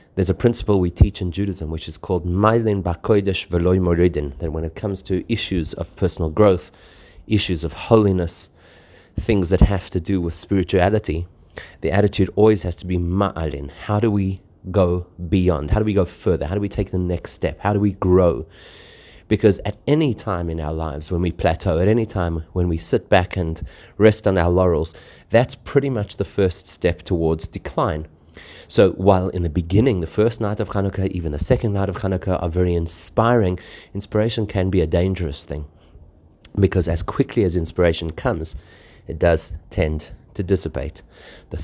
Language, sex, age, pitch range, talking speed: English, male, 30-49, 85-100 Hz, 175 wpm